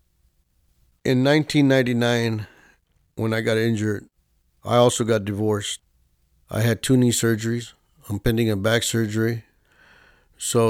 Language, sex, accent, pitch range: English, male, American, 100-120 Hz